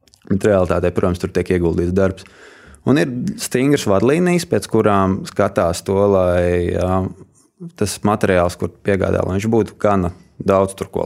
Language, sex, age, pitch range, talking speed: English, male, 20-39, 95-110 Hz, 150 wpm